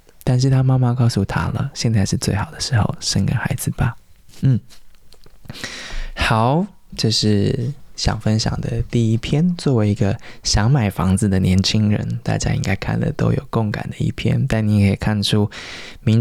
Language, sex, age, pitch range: Chinese, male, 20-39, 100-130 Hz